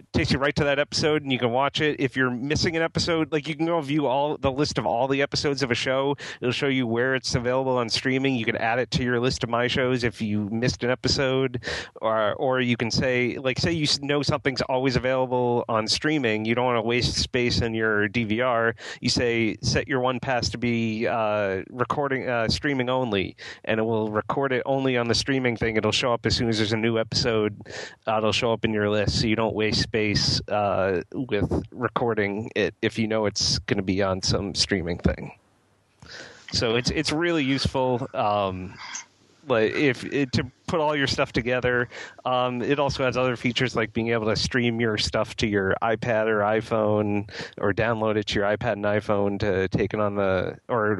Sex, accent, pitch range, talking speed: male, American, 110-130 Hz, 215 wpm